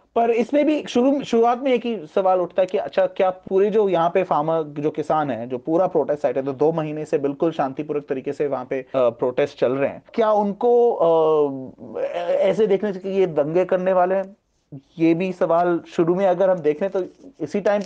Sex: male